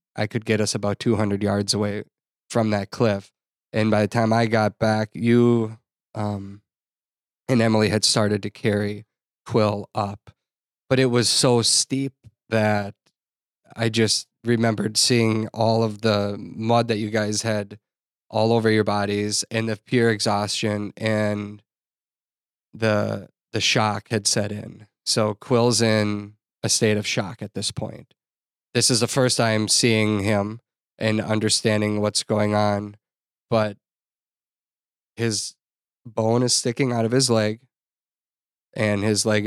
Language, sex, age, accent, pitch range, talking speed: English, male, 20-39, American, 105-115 Hz, 145 wpm